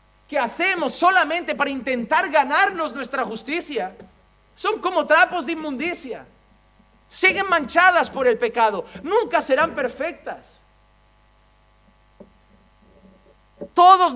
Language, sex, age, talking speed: Spanish, male, 50-69, 95 wpm